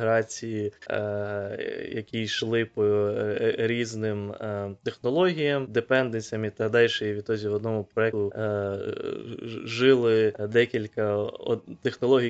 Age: 20-39